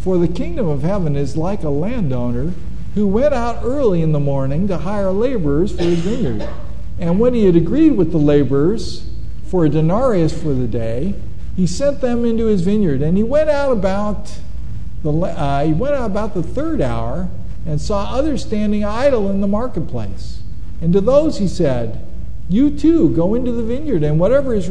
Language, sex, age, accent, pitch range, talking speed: English, male, 50-69, American, 145-230 Hz, 190 wpm